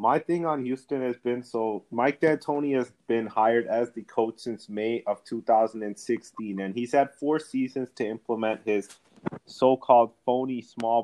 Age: 30-49